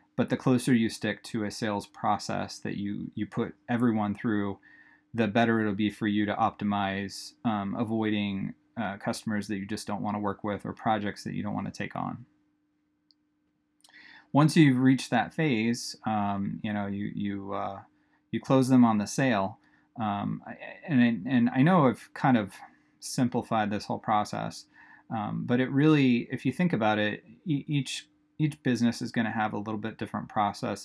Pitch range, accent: 100-125 Hz, American